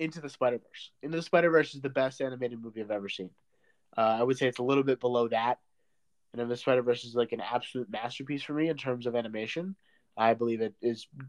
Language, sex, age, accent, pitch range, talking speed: English, male, 30-49, American, 120-160 Hz, 245 wpm